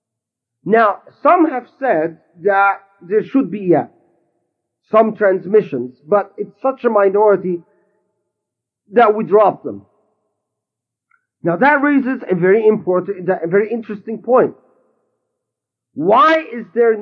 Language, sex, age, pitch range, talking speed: English, male, 40-59, 180-260 Hz, 115 wpm